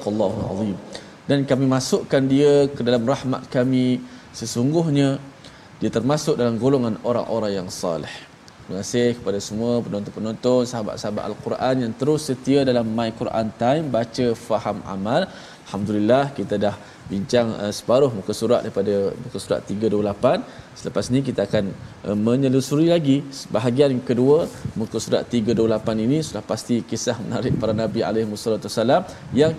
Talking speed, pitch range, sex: 140 wpm, 110-140 Hz, male